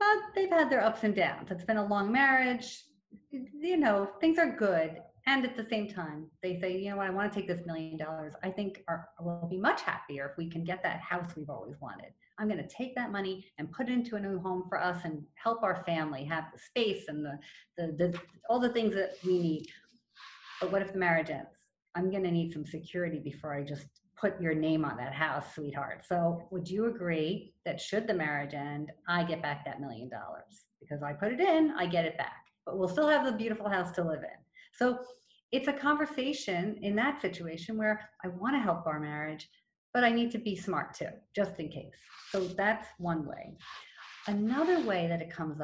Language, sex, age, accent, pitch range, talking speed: English, female, 40-59, American, 160-215 Hz, 225 wpm